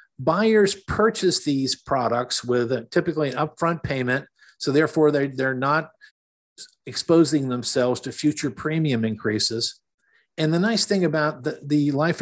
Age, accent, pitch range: 50-69, American, 125-160 Hz